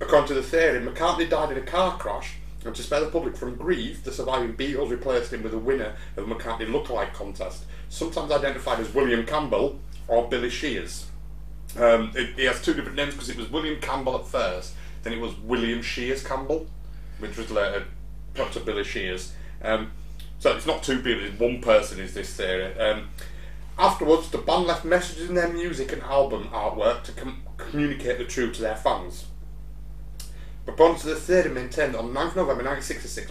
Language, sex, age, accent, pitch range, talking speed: English, male, 30-49, British, 115-160 Hz, 190 wpm